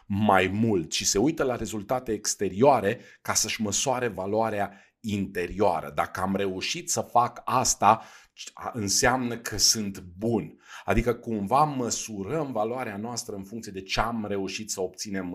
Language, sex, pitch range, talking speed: Romanian, male, 100-130 Hz, 140 wpm